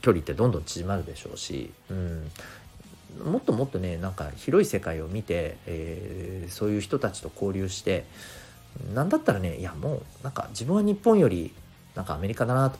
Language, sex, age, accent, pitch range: Japanese, male, 40-59, native, 90-145 Hz